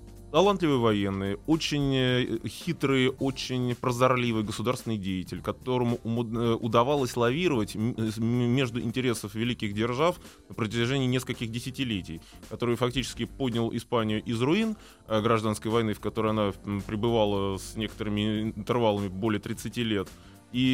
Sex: male